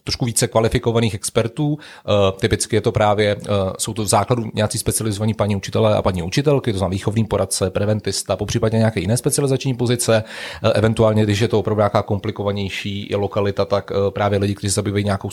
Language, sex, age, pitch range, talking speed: Czech, male, 30-49, 100-120 Hz, 190 wpm